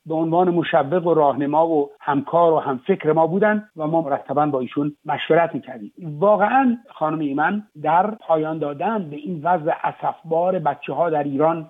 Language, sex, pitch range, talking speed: Persian, male, 140-170 Hz, 165 wpm